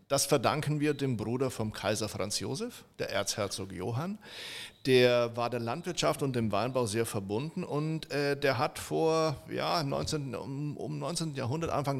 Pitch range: 115-150 Hz